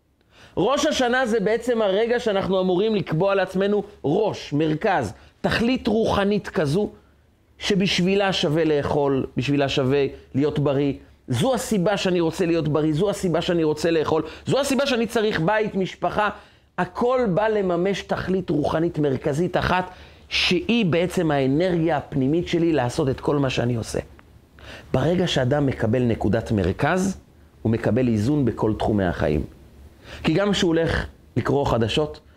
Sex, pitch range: male, 135-200 Hz